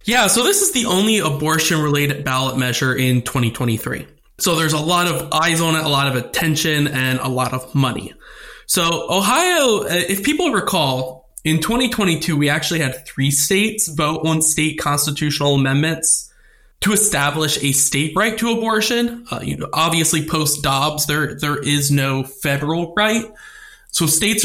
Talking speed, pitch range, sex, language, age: 160 wpm, 135-175 Hz, male, English, 20-39